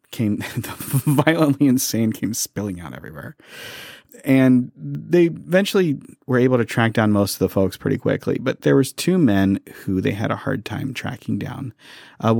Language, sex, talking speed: English, male, 170 wpm